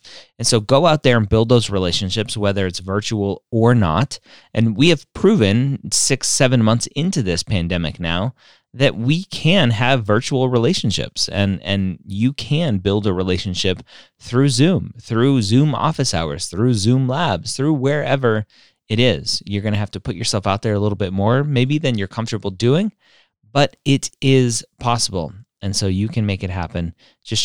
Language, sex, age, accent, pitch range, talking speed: English, male, 30-49, American, 100-130 Hz, 175 wpm